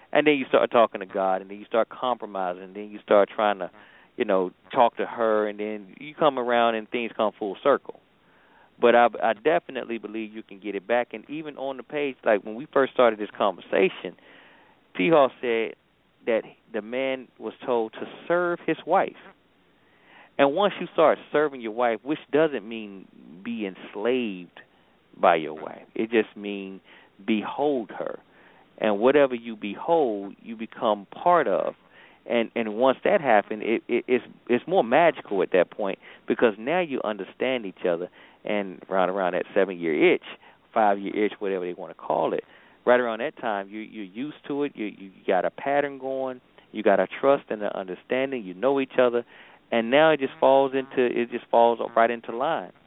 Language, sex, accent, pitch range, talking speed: English, male, American, 110-140 Hz, 190 wpm